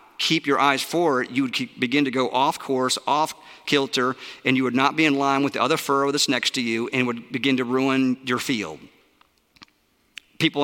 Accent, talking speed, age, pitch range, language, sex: American, 210 wpm, 50-69, 130-155 Hz, English, male